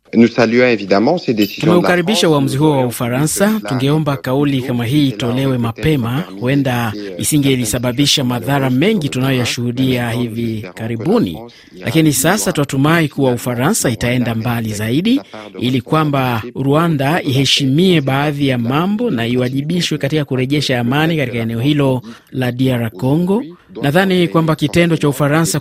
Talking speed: 115 wpm